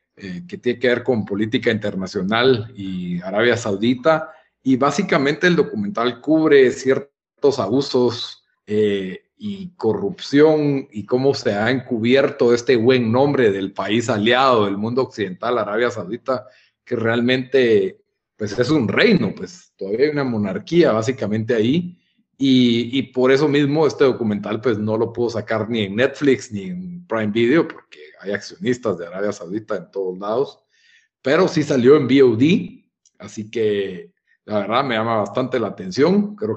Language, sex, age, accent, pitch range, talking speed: Spanish, male, 40-59, Mexican, 110-150 Hz, 155 wpm